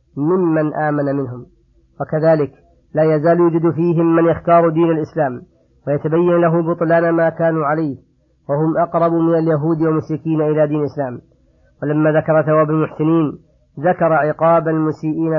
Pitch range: 150-165 Hz